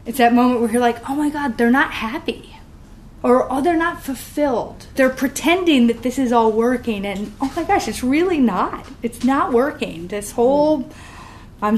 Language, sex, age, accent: English, female, 30-49, American